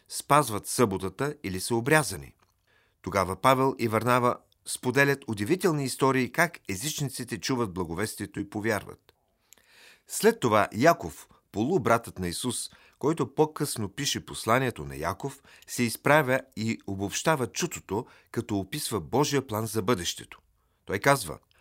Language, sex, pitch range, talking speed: Bulgarian, male, 100-135 Hz, 120 wpm